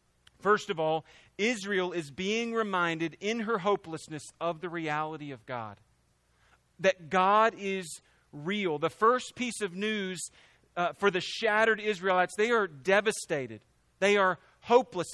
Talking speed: 135 wpm